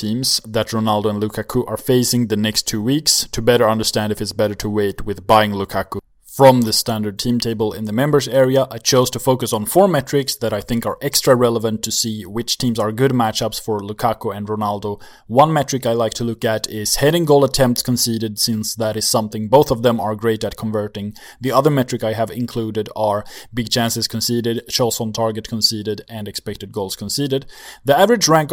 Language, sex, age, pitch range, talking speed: English, male, 20-39, 110-125 Hz, 210 wpm